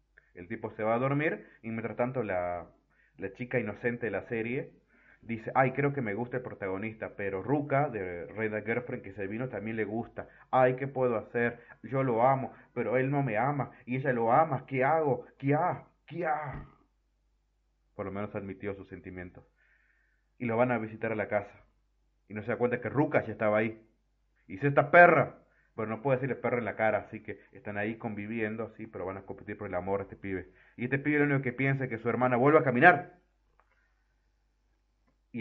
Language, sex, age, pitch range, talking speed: Spanish, male, 30-49, 100-125 Hz, 215 wpm